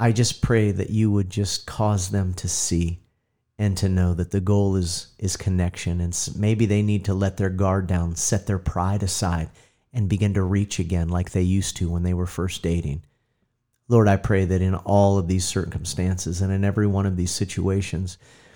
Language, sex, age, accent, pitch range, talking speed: English, male, 40-59, American, 95-110 Hz, 205 wpm